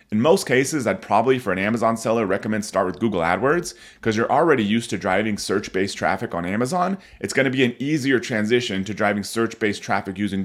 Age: 30-49